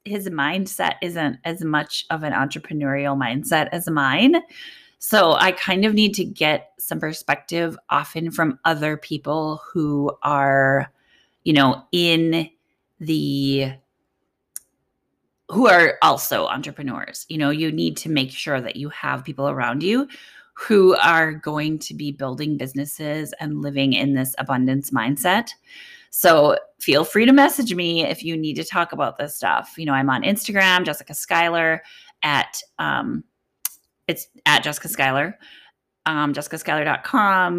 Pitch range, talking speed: 145-180 Hz, 140 wpm